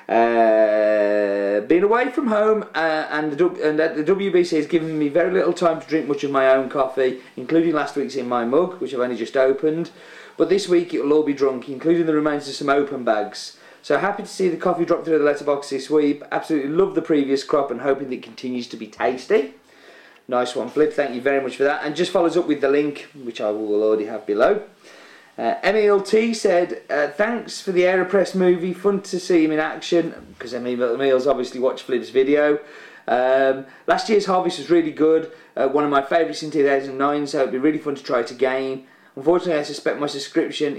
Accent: British